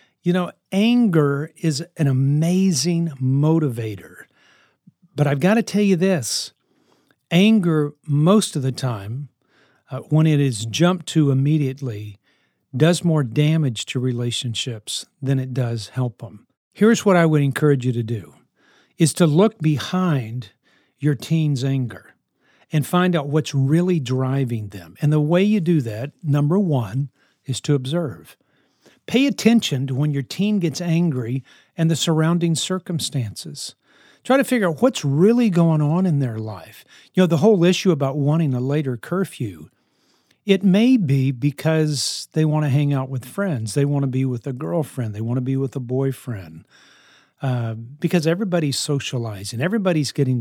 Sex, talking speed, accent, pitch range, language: male, 160 wpm, American, 130-175 Hz, English